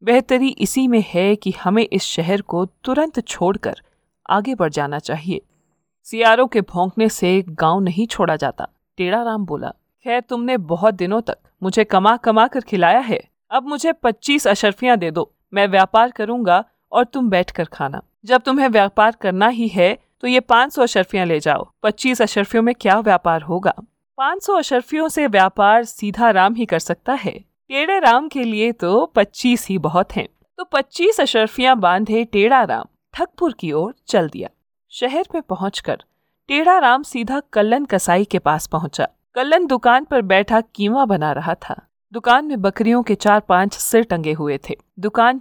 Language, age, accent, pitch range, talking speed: Hindi, 40-59, native, 185-245 Hz, 170 wpm